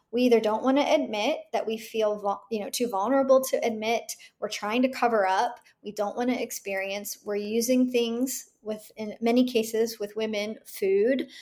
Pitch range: 215-270 Hz